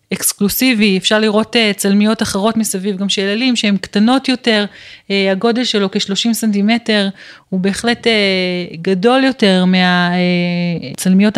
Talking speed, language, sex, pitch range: 110 wpm, Hebrew, female, 190-230 Hz